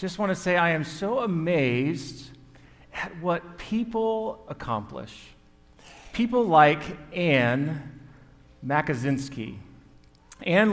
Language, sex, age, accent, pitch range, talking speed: English, male, 40-59, American, 135-185 Hz, 90 wpm